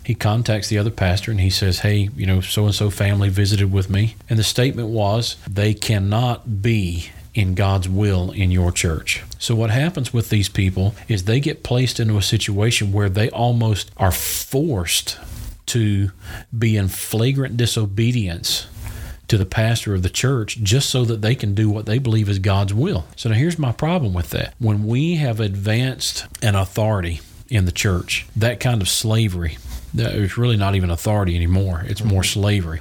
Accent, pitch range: American, 95-110 Hz